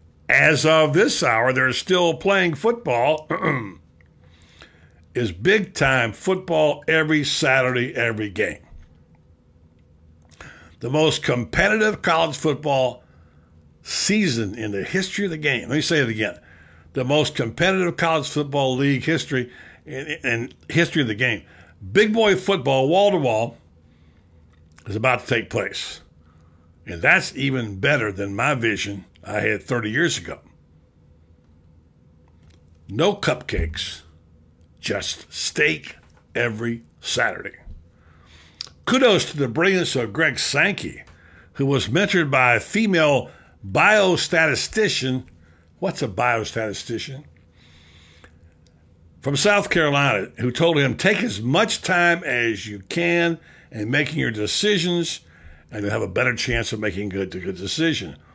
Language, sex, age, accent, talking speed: English, male, 60-79, American, 120 wpm